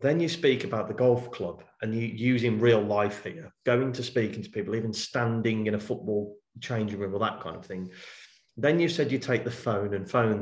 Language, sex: English, male